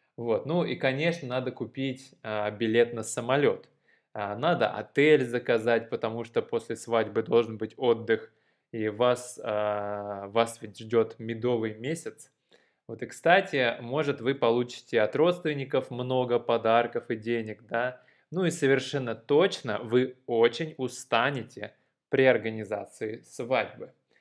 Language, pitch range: Russian, 110-135 Hz